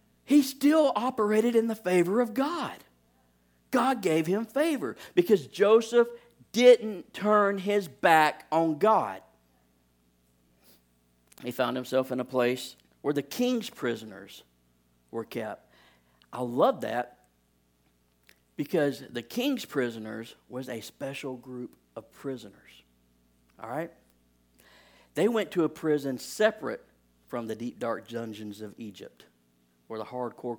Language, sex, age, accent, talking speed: English, male, 50-69, American, 125 wpm